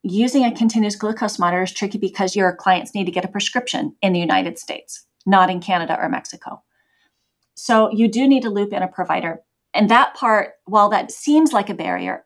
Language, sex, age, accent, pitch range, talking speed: English, female, 30-49, American, 175-215 Hz, 205 wpm